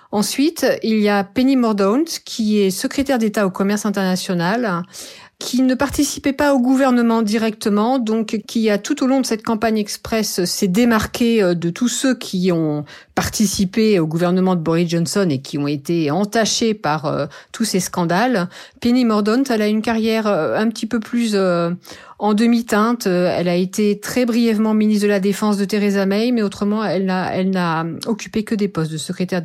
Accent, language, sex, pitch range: French, French, female, 185-235 Hz